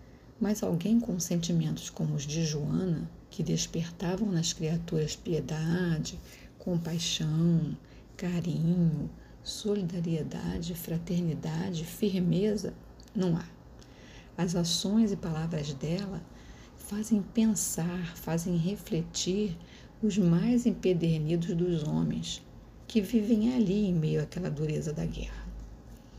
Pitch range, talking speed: 155-190 Hz, 100 wpm